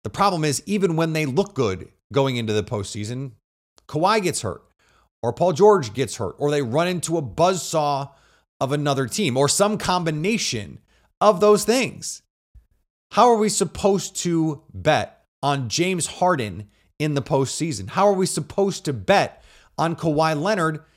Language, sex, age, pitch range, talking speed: English, male, 30-49, 120-180 Hz, 160 wpm